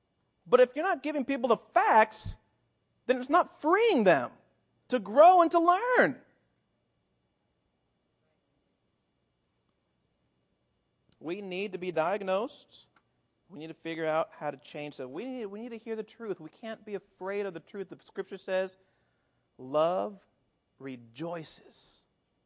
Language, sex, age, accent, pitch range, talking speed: English, male, 40-59, American, 150-210 Hz, 140 wpm